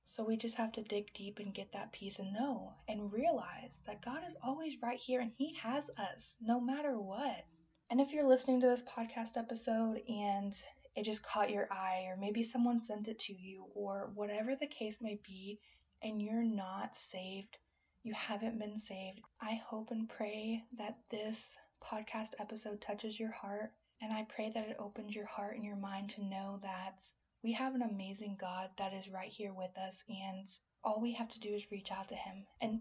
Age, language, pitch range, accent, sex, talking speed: 10-29, English, 195-230 Hz, American, female, 205 wpm